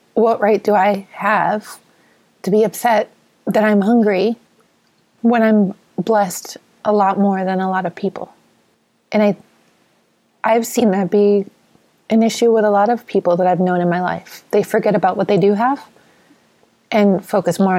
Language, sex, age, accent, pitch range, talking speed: English, female, 30-49, American, 190-220 Hz, 170 wpm